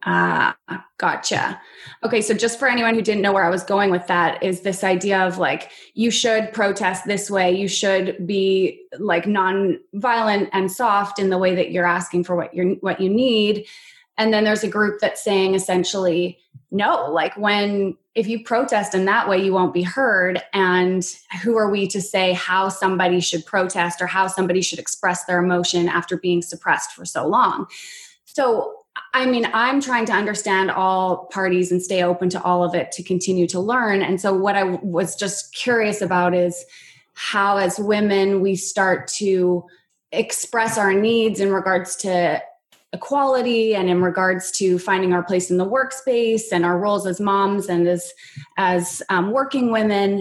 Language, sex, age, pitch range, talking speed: English, female, 20-39, 180-215 Hz, 185 wpm